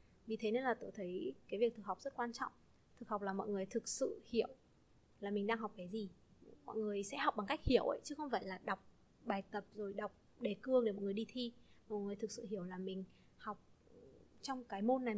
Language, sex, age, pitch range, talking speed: Vietnamese, female, 20-39, 195-240 Hz, 250 wpm